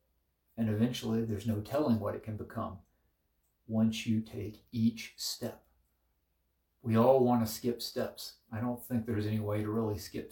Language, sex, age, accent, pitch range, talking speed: English, male, 50-69, American, 100-120 Hz, 170 wpm